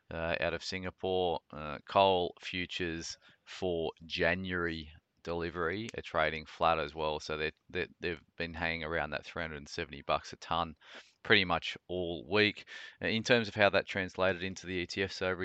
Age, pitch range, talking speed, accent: 20-39, 80-90 Hz, 165 wpm, Australian